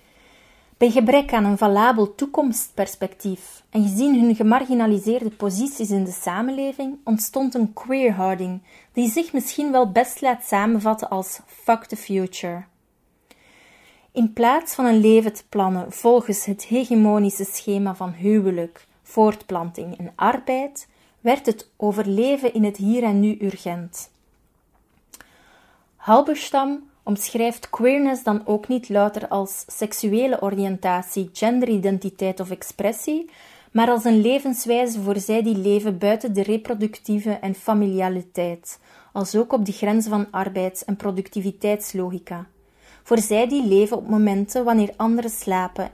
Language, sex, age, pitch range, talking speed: Dutch, female, 30-49, 195-240 Hz, 125 wpm